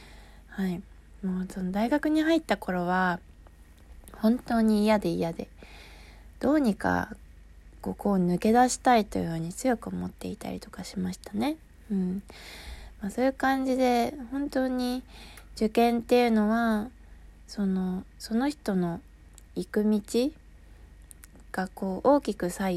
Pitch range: 180-235 Hz